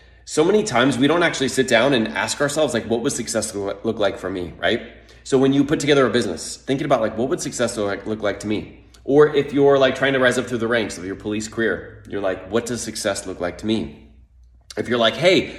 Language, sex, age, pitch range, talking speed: English, male, 30-49, 105-145 Hz, 250 wpm